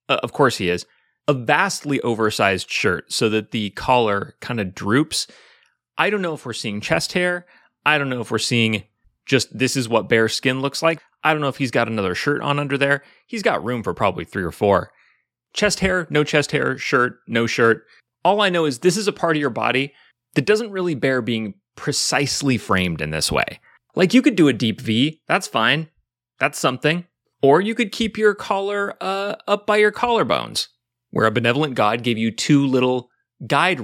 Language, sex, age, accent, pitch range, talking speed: English, male, 30-49, American, 120-175 Hz, 205 wpm